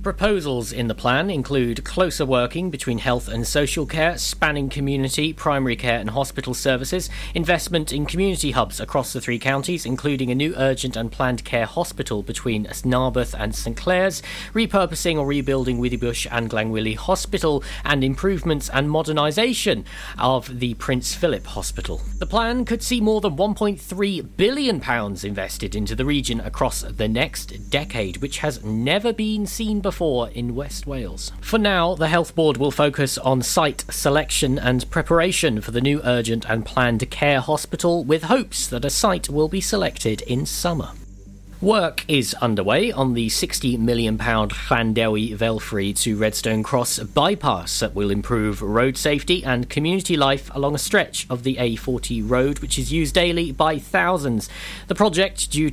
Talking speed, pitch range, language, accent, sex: 160 wpm, 115-160 Hz, English, British, male